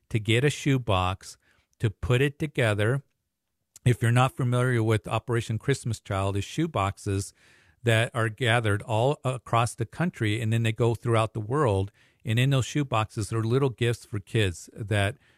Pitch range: 100-125 Hz